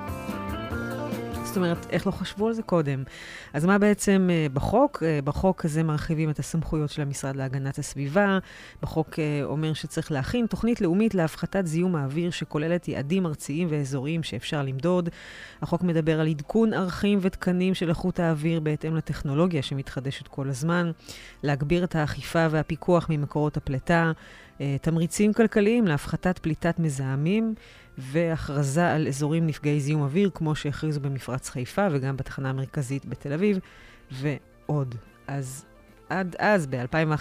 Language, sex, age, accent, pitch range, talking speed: Hebrew, female, 30-49, native, 140-180 Hz, 135 wpm